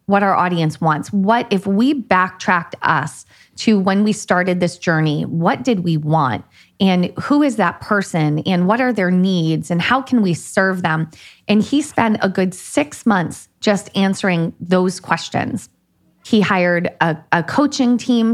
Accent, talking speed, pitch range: American, 170 wpm, 175-220 Hz